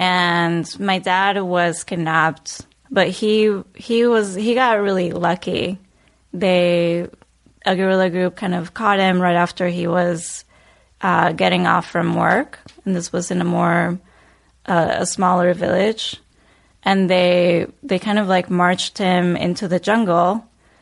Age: 20-39